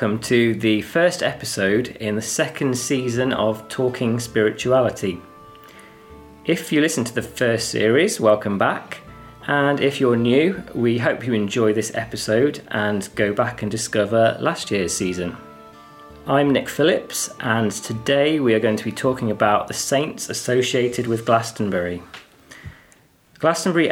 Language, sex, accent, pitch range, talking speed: English, male, British, 105-130 Hz, 145 wpm